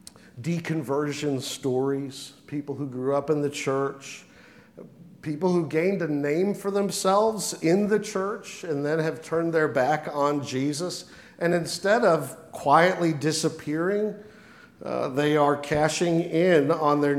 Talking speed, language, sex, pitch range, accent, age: 135 wpm, English, male, 145-195 Hz, American, 50-69